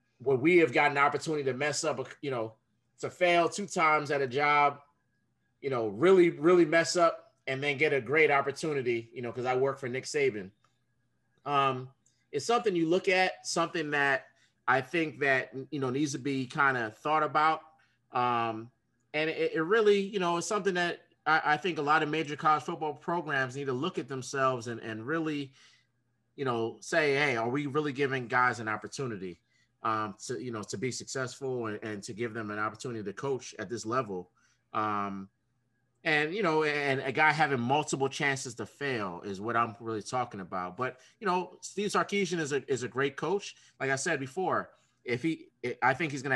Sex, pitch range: male, 125-160 Hz